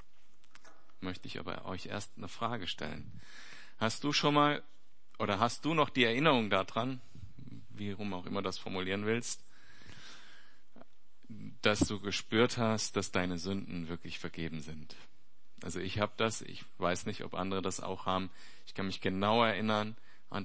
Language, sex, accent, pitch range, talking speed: German, male, German, 95-115 Hz, 160 wpm